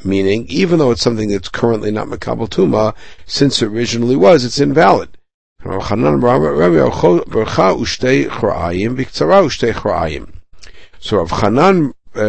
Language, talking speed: English, 105 wpm